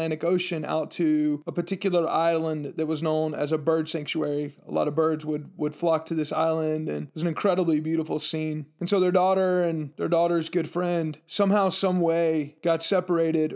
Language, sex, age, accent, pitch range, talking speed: English, male, 20-39, American, 155-175 Hz, 195 wpm